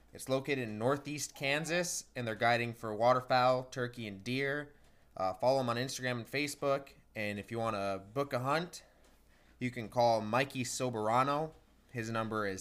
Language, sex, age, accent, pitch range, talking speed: English, male, 20-39, American, 120-140 Hz, 170 wpm